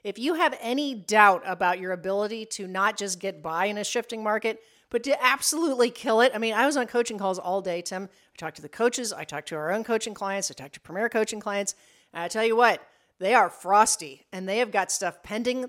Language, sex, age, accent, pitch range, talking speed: English, female, 40-59, American, 190-245 Hz, 245 wpm